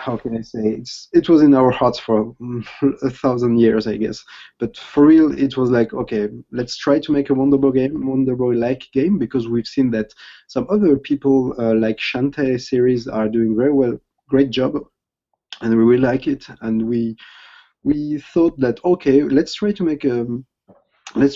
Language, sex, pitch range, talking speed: English, male, 115-140 Hz, 180 wpm